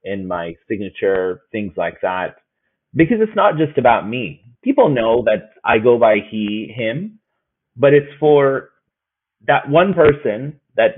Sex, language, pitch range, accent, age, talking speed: male, English, 115-155 Hz, American, 30-49, 150 wpm